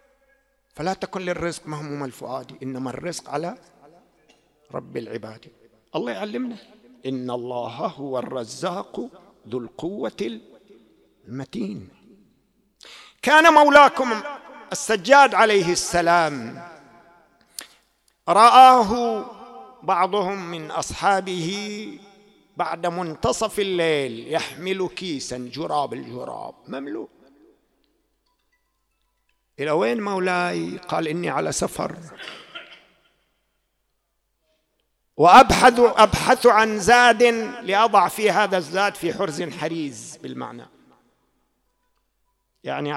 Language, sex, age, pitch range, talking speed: English, male, 50-69, 145-225 Hz, 75 wpm